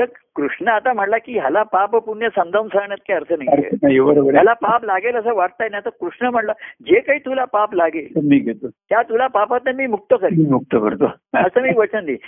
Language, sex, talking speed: Marathi, male, 50 wpm